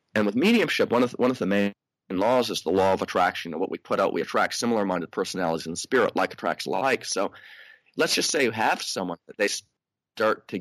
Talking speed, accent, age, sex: 240 wpm, American, 30-49, male